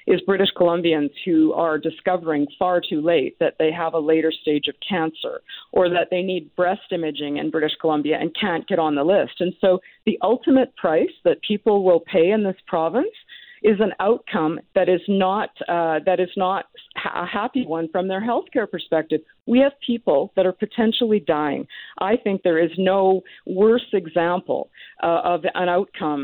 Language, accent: English, American